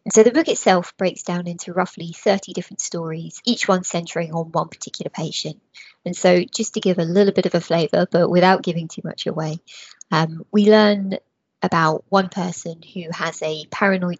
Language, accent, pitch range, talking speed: English, British, 170-195 Hz, 190 wpm